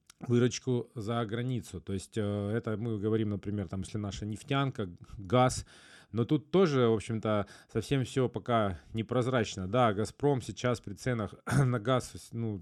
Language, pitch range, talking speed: Russian, 105-120 Hz, 150 wpm